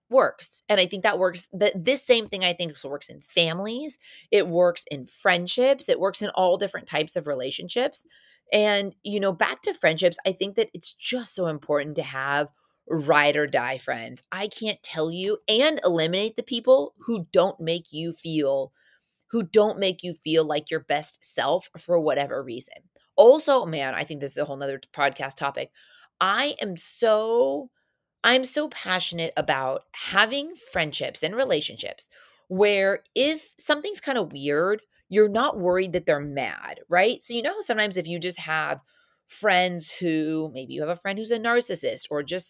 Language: English